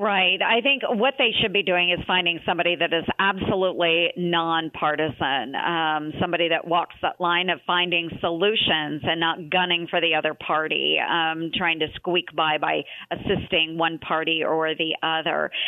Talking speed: 165 wpm